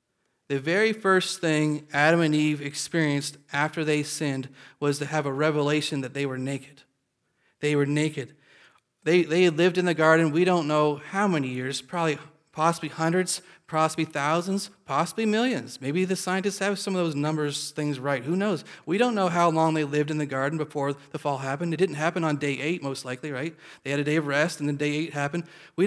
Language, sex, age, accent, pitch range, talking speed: English, male, 30-49, American, 145-175 Hz, 205 wpm